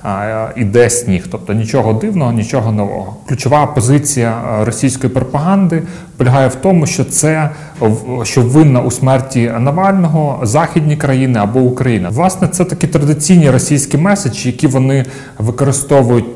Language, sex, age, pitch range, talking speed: Ukrainian, male, 30-49, 115-135 Hz, 125 wpm